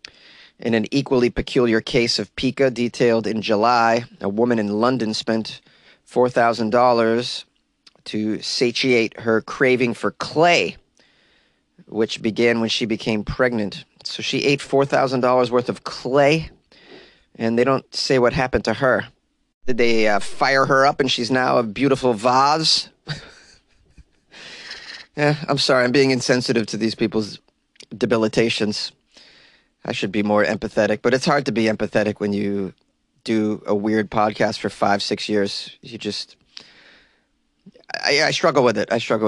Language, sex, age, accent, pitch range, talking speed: English, male, 30-49, American, 110-135 Hz, 145 wpm